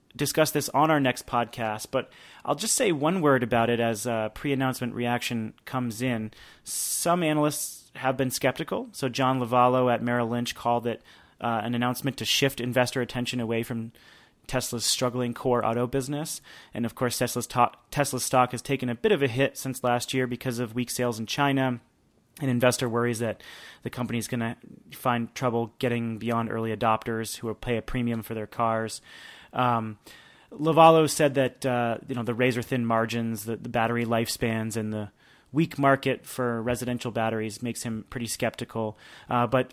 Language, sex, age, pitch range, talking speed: English, male, 30-49, 115-135 Hz, 185 wpm